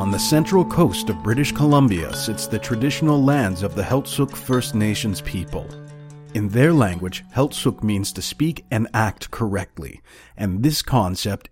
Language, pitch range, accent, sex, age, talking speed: English, 100-135 Hz, American, male, 40-59, 155 wpm